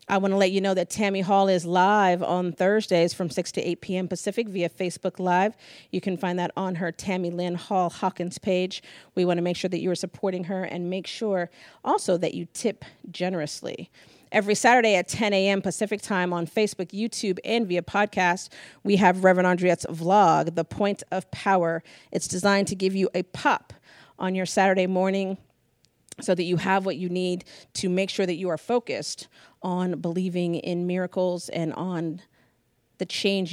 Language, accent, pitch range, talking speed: English, American, 180-205 Hz, 190 wpm